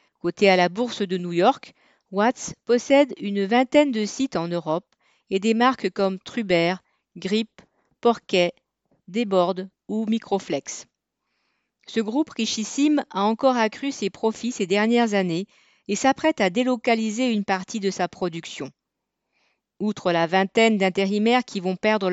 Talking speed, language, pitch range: 140 wpm, French, 185-240 Hz